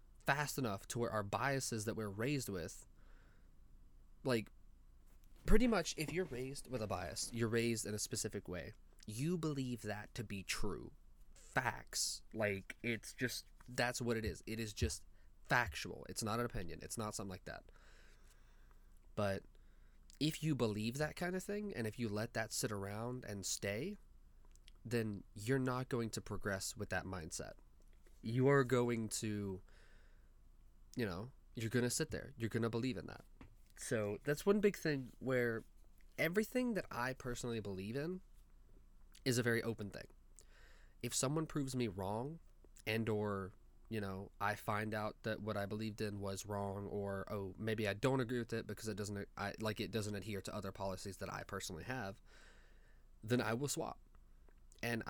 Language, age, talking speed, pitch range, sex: English, 20-39, 175 wpm, 100-125 Hz, male